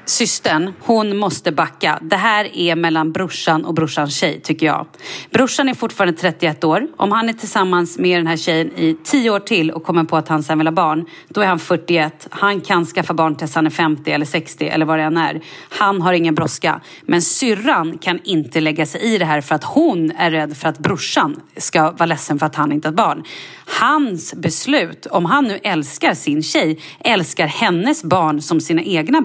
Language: Swedish